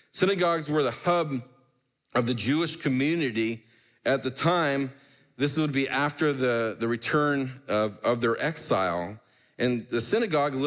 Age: 40-59